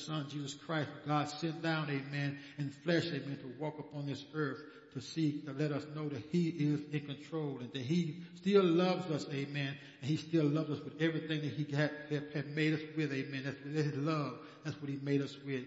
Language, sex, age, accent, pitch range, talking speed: English, male, 60-79, American, 145-165 Hz, 220 wpm